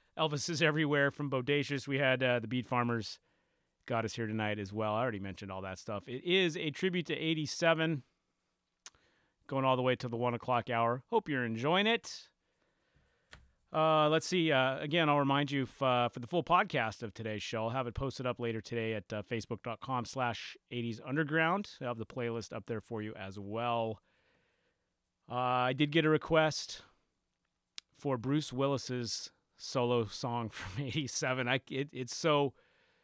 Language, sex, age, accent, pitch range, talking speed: English, male, 30-49, American, 115-145 Hz, 175 wpm